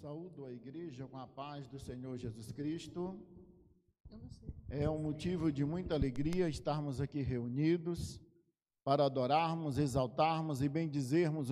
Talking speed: 125 wpm